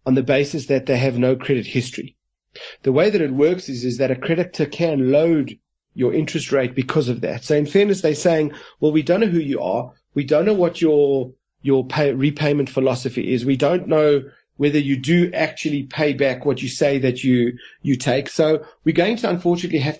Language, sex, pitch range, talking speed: English, male, 135-160 Hz, 215 wpm